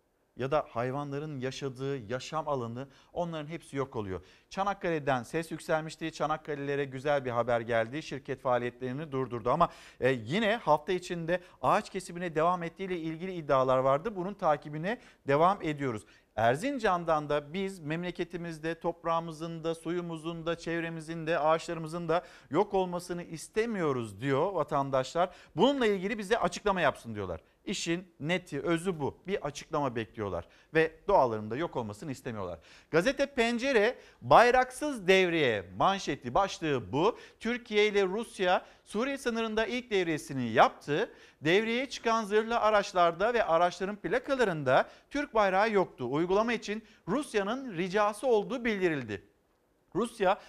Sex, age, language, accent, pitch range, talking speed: male, 50-69, Turkish, native, 155-210 Hz, 120 wpm